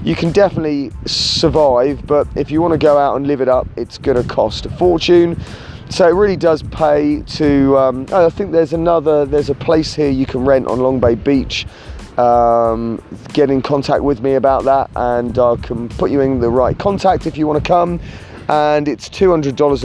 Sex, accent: male, British